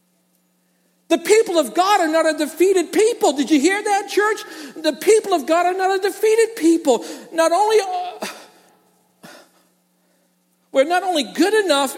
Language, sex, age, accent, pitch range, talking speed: English, male, 50-69, American, 265-340 Hz, 150 wpm